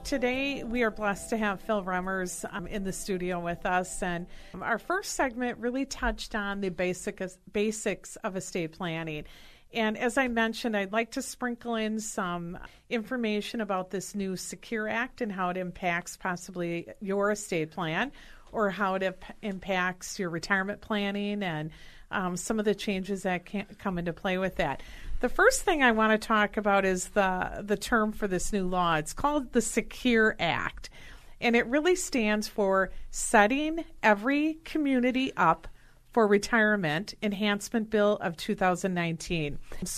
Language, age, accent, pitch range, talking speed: English, 50-69, American, 185-230 Hz, 165 wpm